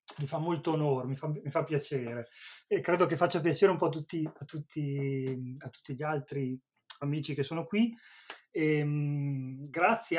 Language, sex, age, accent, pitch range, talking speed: Italian, male, 30-49, native, 130-155 Hz, 185 wpm